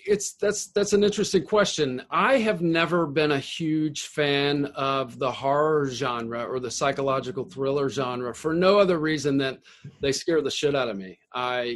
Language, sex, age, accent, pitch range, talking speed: English, male, 40-59, American, 135-170 Hz, 180 wpm